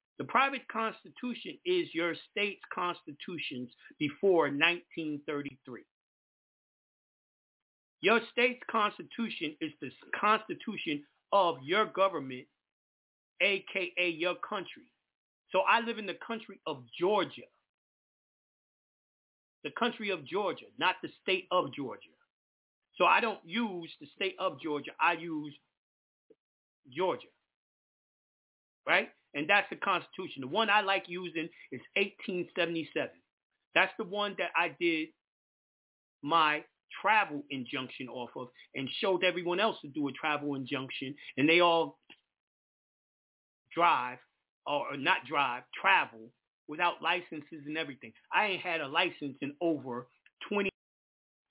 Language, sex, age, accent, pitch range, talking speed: English, male, 40-59, American, 145-200 Hz, 120 wpm